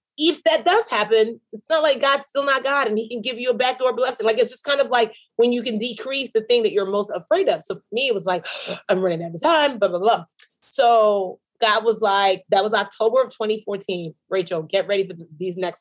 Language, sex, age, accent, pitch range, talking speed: English, female, 30-49, American, 185-240 Hz, 245 wpm